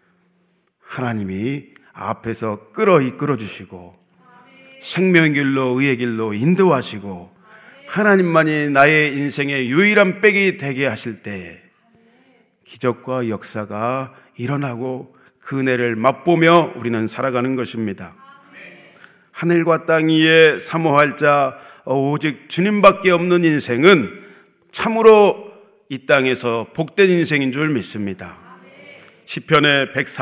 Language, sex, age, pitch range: Korean, male, 40-59, 125-165 Hz